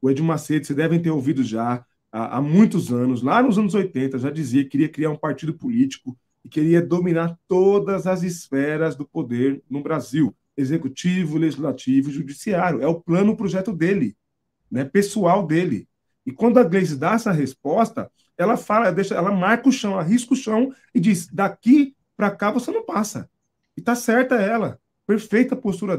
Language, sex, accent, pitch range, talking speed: Portuguese, male, Brazilian, 155-210 Hz, 175 wpm